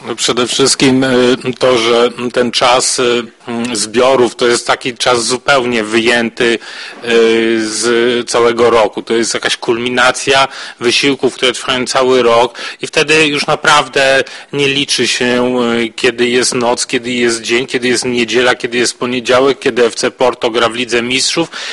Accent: native